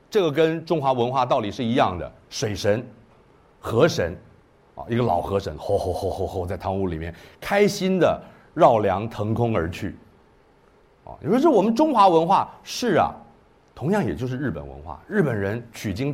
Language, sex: Chinese, male